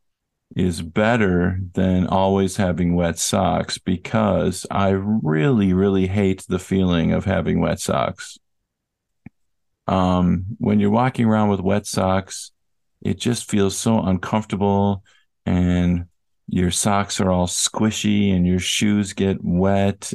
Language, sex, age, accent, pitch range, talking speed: English, male, 50-69, American, 90-100 Hz, 125 wpm